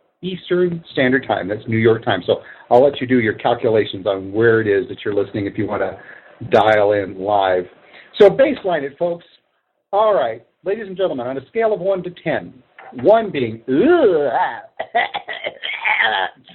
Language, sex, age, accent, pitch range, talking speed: English, male, 50-69, American, 155-260 Hz, 170 wpm